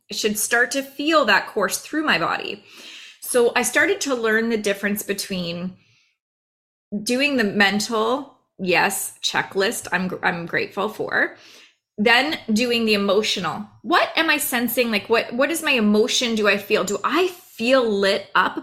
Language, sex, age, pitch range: English, female, 20-39, 210-280 Hz